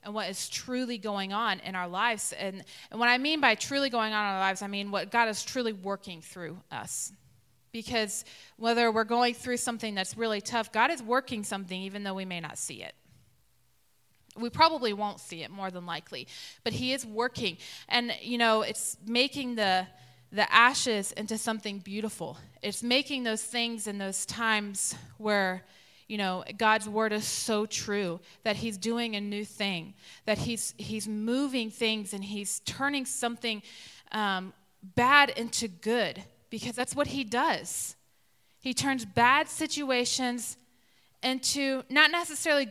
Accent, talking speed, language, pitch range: American, 165 wpm, English, 200-245 Hz